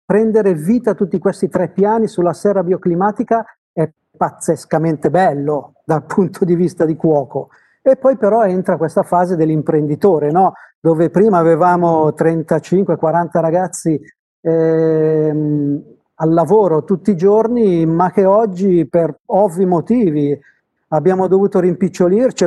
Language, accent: Italian, native